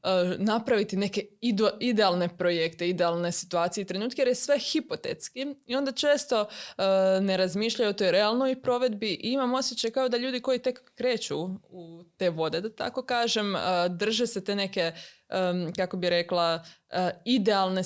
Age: 20-39